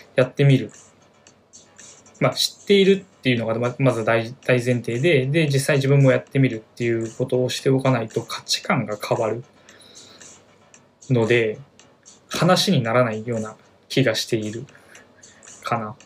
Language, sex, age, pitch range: Japanese, male, 20-39, 115-150 Hz